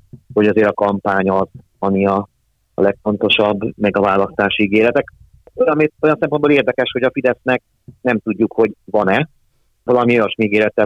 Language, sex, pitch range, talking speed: Hungarian, male, 100-120 Hz, 150 wpm